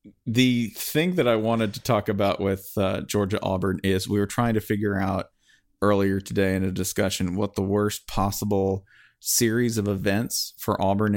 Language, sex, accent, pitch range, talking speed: English, male, American, 95-110 Hz, 175 wpm